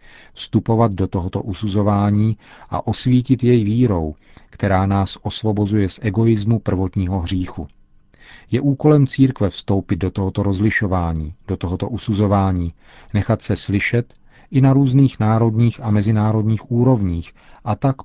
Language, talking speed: Czech, 125 wpm